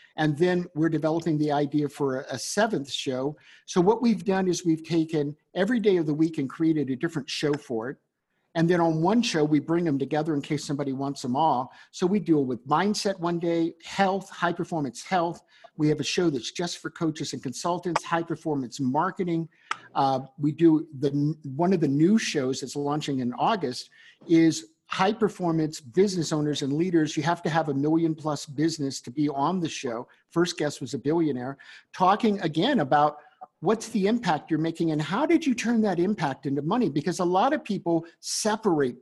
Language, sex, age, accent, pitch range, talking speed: English, male, 50-69, American, 145-185 Hz, 190 wpm